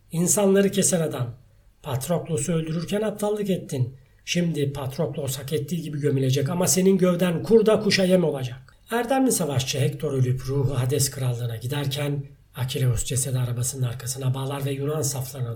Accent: native